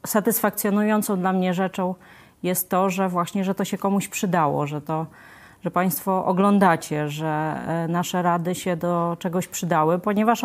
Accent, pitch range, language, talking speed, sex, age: native, 175-200 Hz, Polish, 150 wpm, female, 30-49